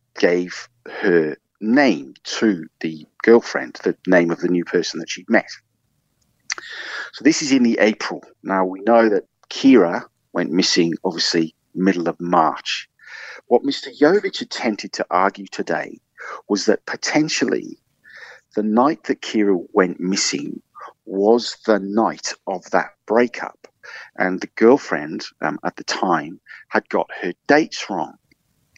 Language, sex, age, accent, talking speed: English, male, 50-69, British, 140 wpm